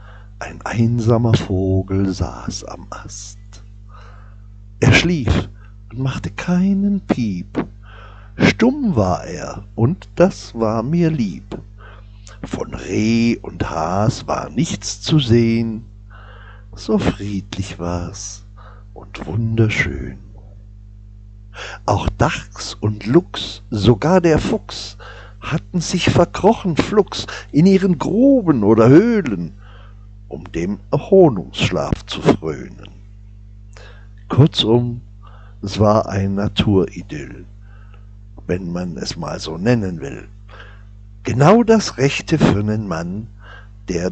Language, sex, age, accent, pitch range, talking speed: German, male, 60-79, German, 100-125 Hz, 100 wpm